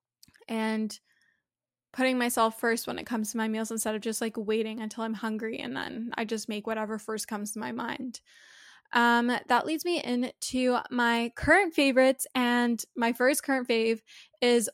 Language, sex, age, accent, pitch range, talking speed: English, female, 10-29, American, 225-265 Hz, 175 wpm